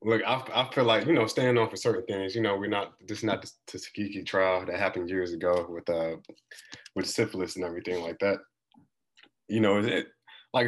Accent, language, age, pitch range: American, English, 20-39, 90-110 Hz